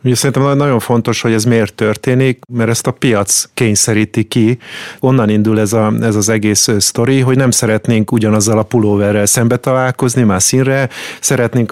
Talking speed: 170 wpm